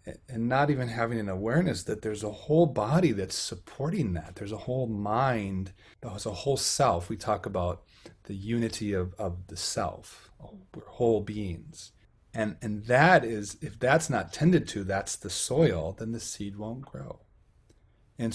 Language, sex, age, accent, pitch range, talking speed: English, male, 30-49, American, 95-115 Hz, 170 wpm